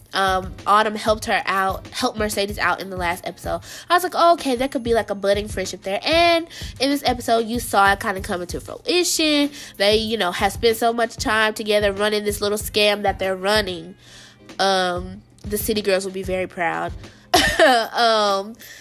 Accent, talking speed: American, 200 wpm